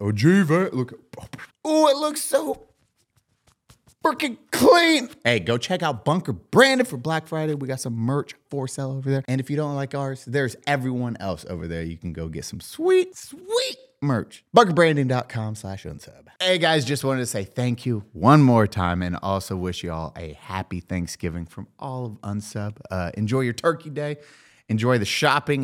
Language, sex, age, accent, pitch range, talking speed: English, male, 30-49, American, 85-135 Hz, 185 wpm